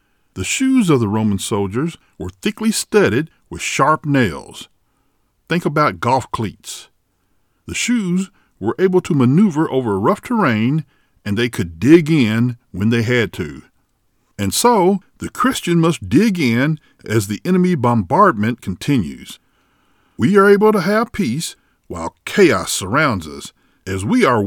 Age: 50-69